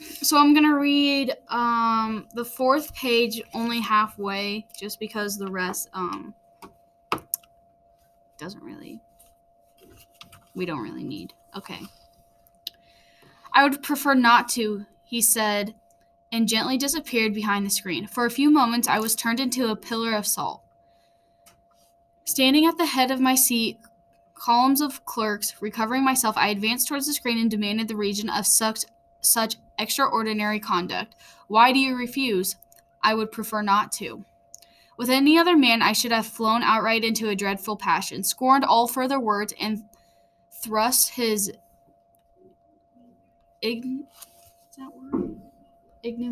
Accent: American